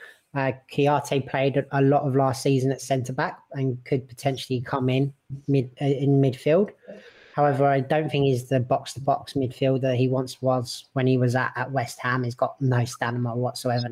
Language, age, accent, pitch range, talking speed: English, 20-39, British, 130-145 Hz, 190 wpm